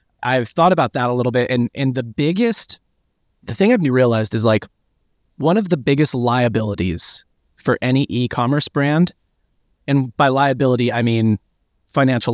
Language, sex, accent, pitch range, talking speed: English, male, American, 110-135 Hz, 155 wpm